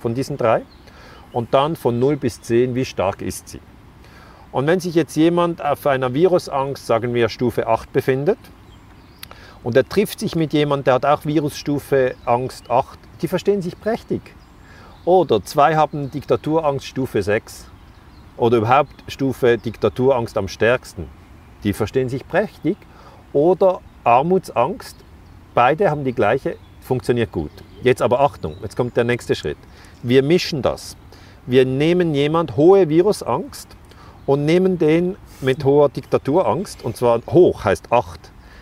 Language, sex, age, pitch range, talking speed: German, male, 40-59, 100-135 Hz, 145 wpm